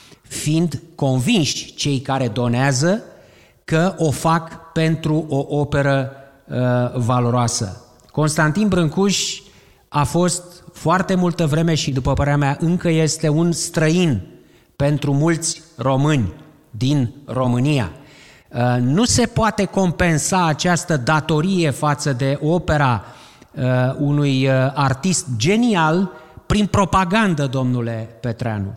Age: 30-49